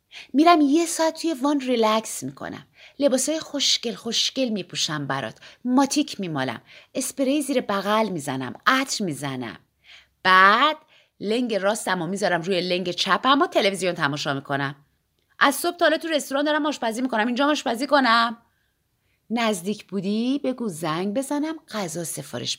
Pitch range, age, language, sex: 175-280 Hz, 30-49, Persian, female